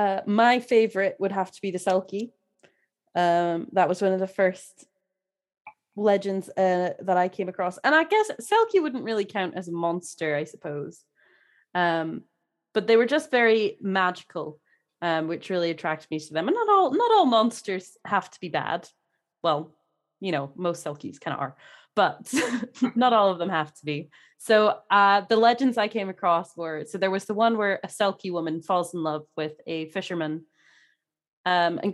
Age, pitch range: 20-39, 170-205 Hz